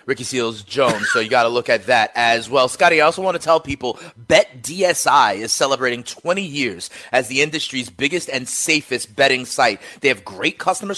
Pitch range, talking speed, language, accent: 130-180 Hz, 200 wpm, English, American